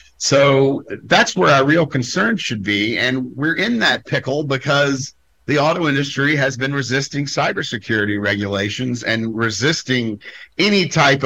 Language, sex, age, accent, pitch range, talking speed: English, male, 50-69, American, 105-130 Hz, 140 wpm